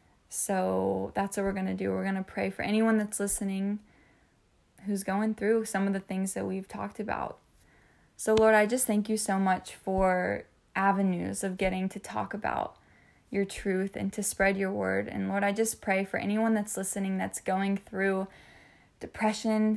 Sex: female